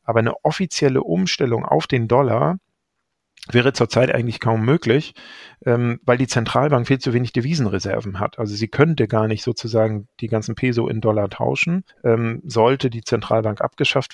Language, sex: German, male